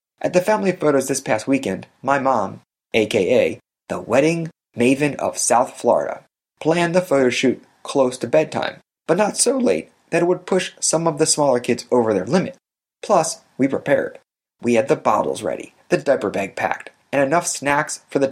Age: 30-49